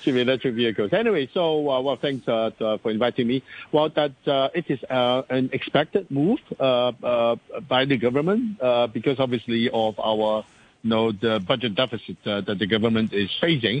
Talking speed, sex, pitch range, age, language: 185 wpm, male, 100-120 Hz, 60-79, English